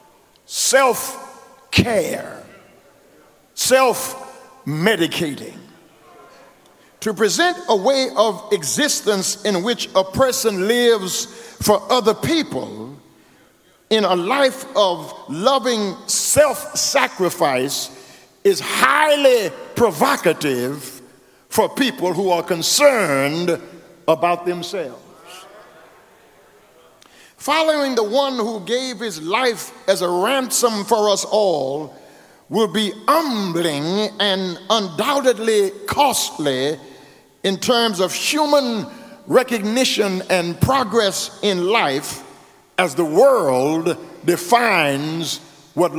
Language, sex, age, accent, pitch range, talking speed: English, male, 50-69, American, 175-260 Hz, 85 wpm